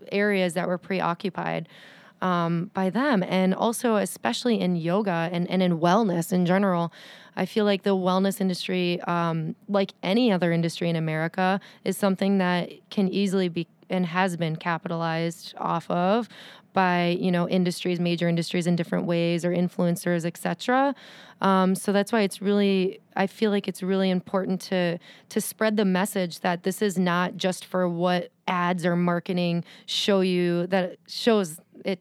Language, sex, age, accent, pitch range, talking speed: English, female, 20-39, American, 175-200 Hz, 165 wpm